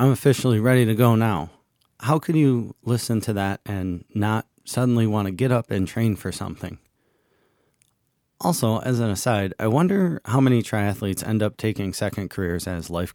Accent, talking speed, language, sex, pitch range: American, 180 wpm, English, male, 95-120 Hz